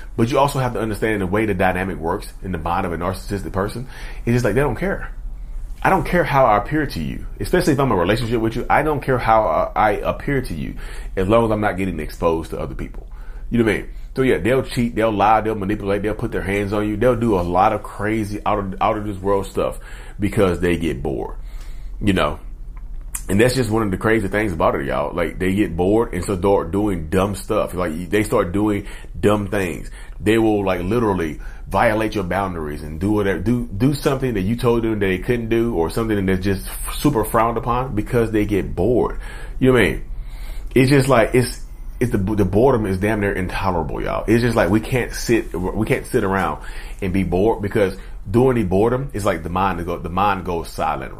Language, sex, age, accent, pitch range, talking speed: English, male, 30-49, American, 95-115 Hz, 235 wpm